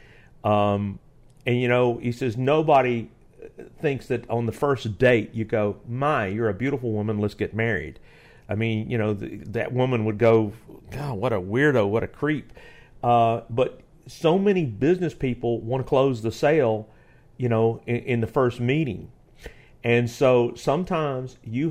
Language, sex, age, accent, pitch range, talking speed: English, male, 50-69, American, 115-150 Hz, 170 wpm